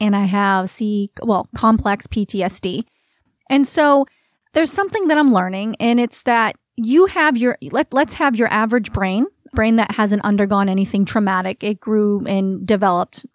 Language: English